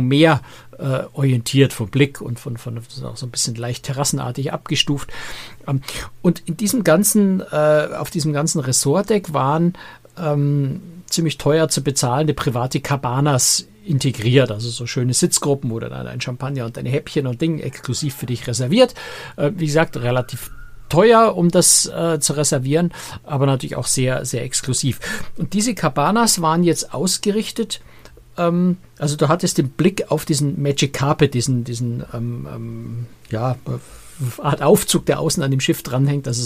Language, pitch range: German, 125-160 Hz